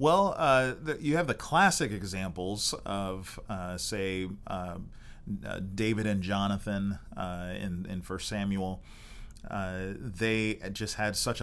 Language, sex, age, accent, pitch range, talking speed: English, male, 30-49, American, 95-115 Hz, 125 wpm